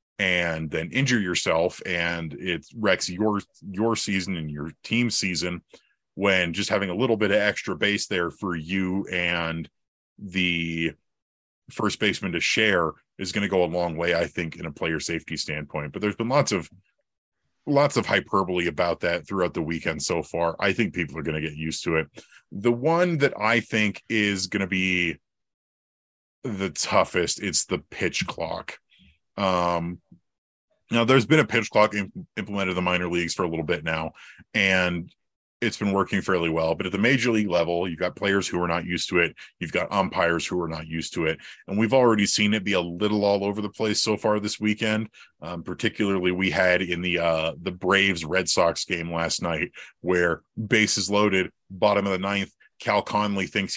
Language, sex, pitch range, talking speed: English, male, 85-105 Hz, 195 wpm